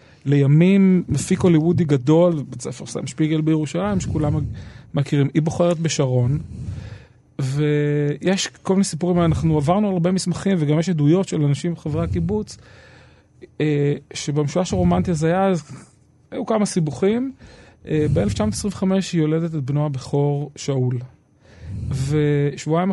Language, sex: Hebrew, male